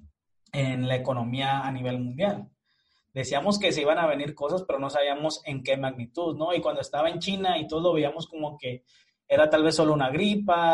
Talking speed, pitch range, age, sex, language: 205 wpm, 140-170 Hz, 20-39, male, Spanish